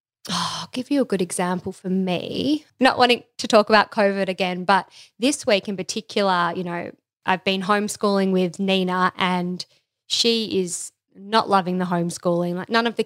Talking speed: 175 wpm